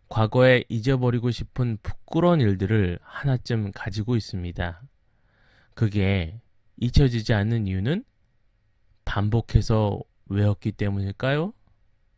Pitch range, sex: 100-125 Hz, male